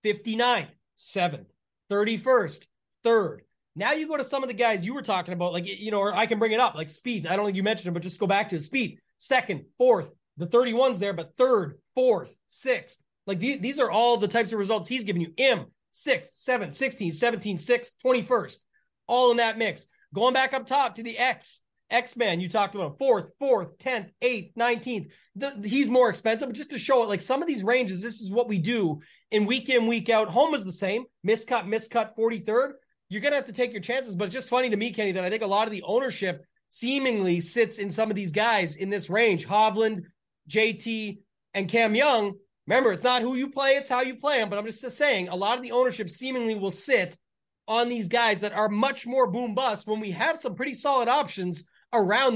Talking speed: 230 wpm